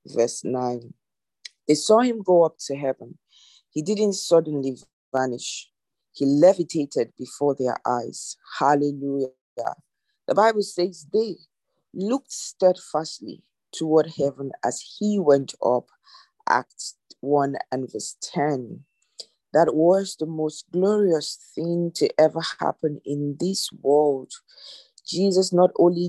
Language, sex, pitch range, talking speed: English, female, 145-185 Hz, 115 wpm